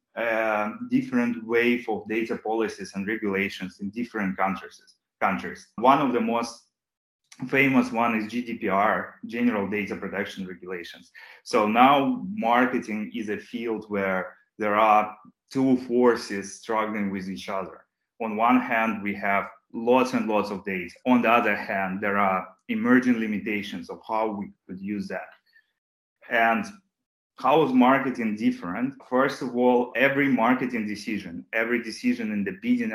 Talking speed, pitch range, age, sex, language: 145 wpm, 100-125 Hz, 20-39, male, English